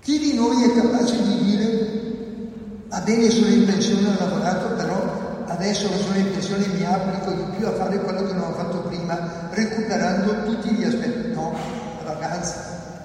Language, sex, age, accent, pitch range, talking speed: Italian, male, 60-79, native, 180-230 Hz, 175 wpm